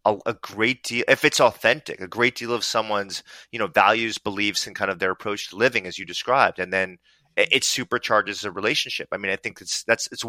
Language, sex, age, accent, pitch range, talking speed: English, male, 30-49, American, 95-120 Hz, 235 wpm